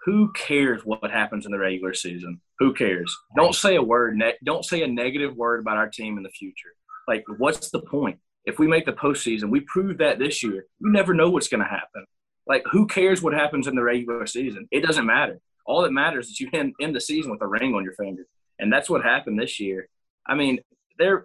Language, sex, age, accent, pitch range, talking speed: English, male, 20-39, American, 105-160 Hz, 235 wpm